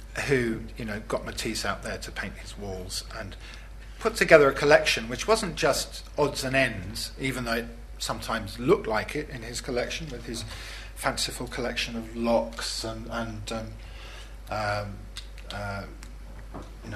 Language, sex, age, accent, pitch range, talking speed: English, male, 40-59, British, 100-120 Hz, 150 wpm